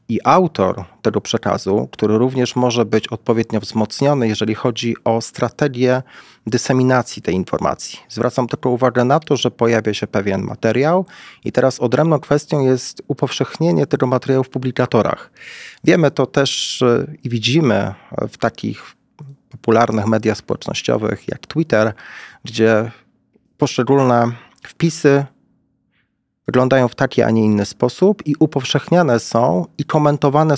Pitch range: 115-145 Hz